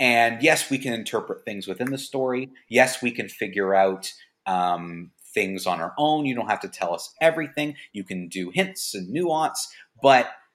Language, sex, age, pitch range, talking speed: English, male, 30-49, 95-130 Hz, 190 wpm